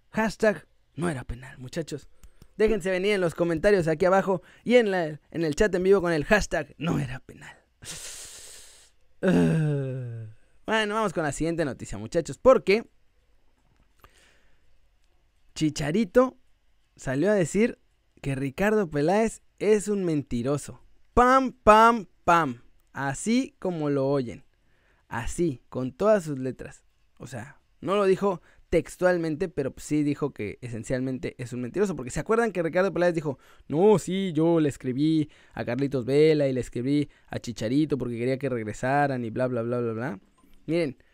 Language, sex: Spanish, male